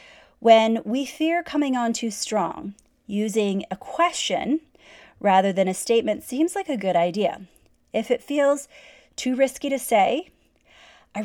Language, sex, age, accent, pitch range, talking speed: English, female, 30-49, American, 175-250 Hz, 145 wpm